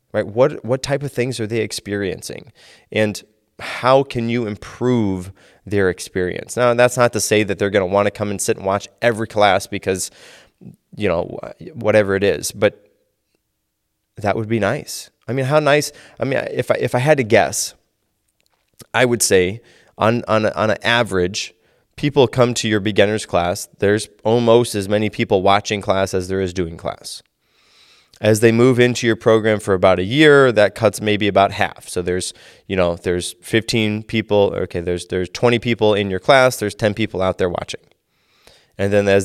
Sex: male